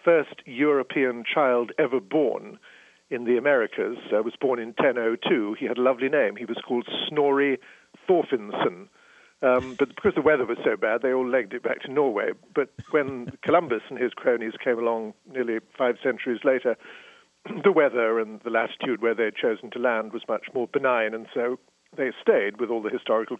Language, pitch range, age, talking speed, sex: English, 120-150 Hz, 50-69, 185 wpm, male